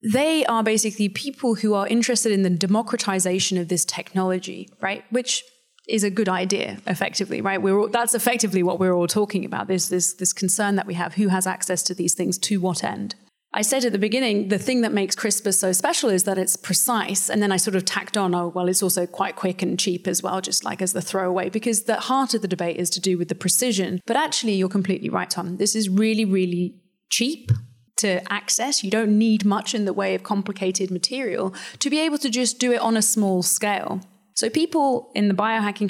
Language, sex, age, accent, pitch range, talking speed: English, female, 30-49, British, 190-225 Hz, 220 wpm